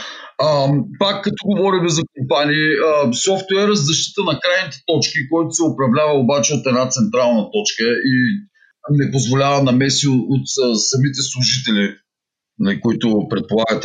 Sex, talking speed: male, 115 wpm